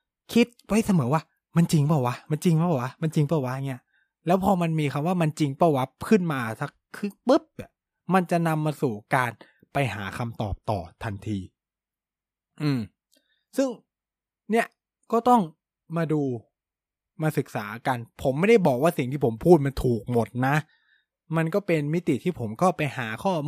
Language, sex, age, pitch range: Thai, male, 20-39, 115-170 Hz